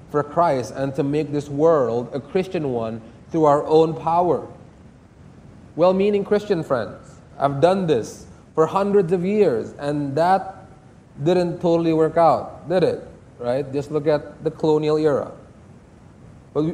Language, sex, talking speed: English, male, 145 wpm